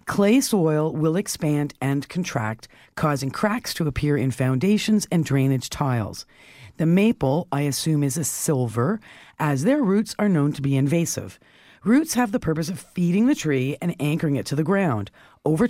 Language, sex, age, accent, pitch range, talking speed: English, female, 50-69, American, 140-195 Hz, 170 wpm